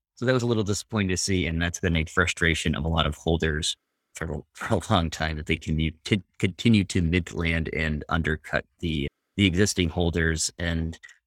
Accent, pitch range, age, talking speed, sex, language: American, 80-95 Hz, 30-49, 190 wpm, male, English